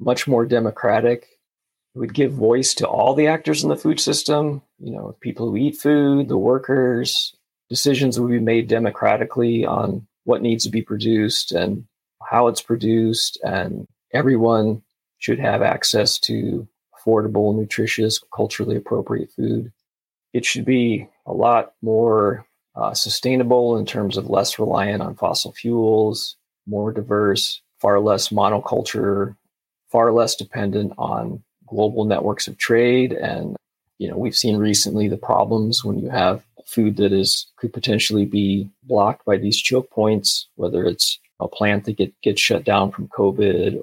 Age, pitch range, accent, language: 30-49, 105-120 Hz, American, English